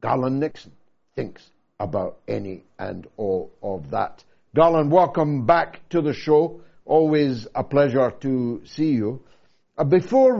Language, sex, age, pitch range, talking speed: English, male, 60-79, 140-190 Hz, 125 wpm